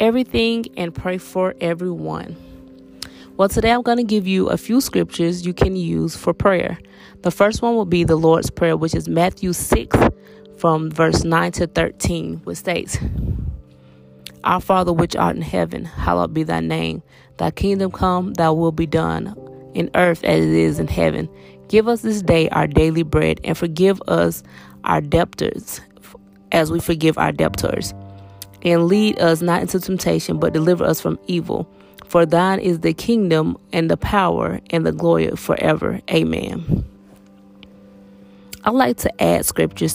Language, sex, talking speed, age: English, female, 165 wpm, 20-39